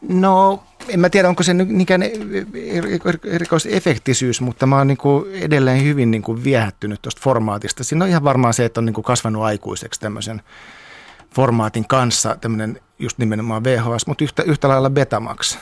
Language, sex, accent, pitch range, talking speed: Finnish, male, native, 110-130 Hz, 155 wpm